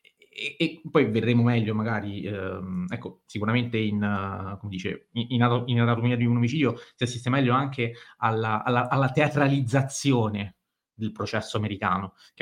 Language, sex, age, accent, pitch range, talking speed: Italian, male, 30-49, native, 110-135 Hz, 140 wpm